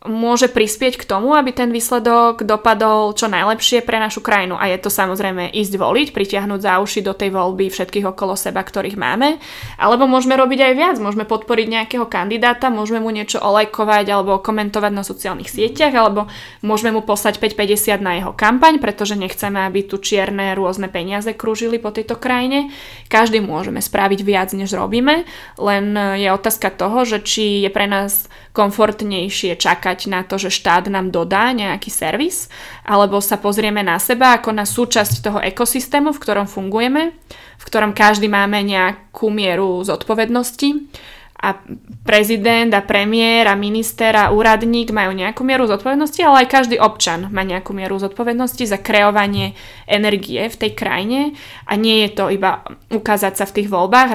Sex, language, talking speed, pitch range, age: female, Slovak, 165 wpm, 195-230 Hz, 20-39